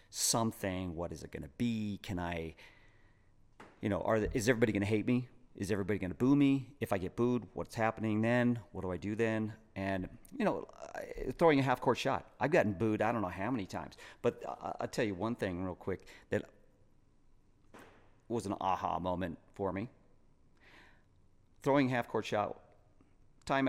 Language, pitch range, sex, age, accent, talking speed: English, 95-115 Hz, male, 40-59, American, 185 wpm